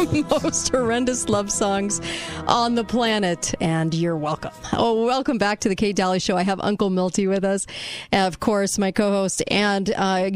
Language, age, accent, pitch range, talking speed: English, 40-59, American, 185-225 Hz, 180 wpm